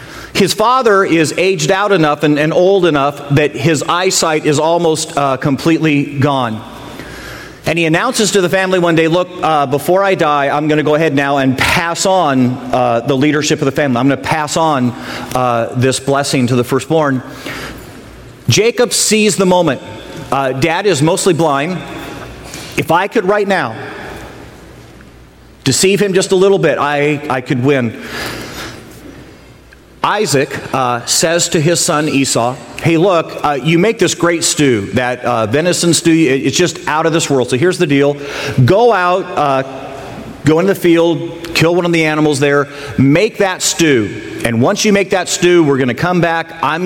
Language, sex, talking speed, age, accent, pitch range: English, male, 175 wpm, 40-59, American, 135-175 Hz